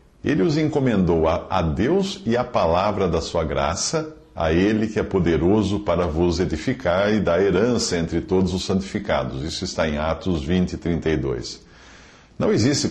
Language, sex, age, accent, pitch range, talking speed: English, male, 50-69, Brazilian, 85-115 Hz, 165 wpm